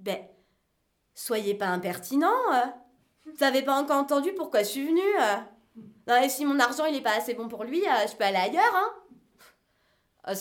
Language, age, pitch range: French, 20-39, 195-285 Hz